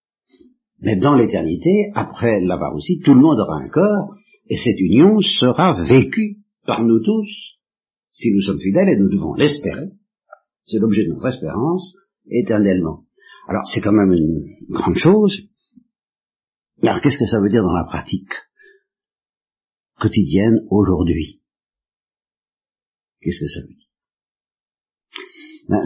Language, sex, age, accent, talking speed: French, male, 60-79, French, 135 wpm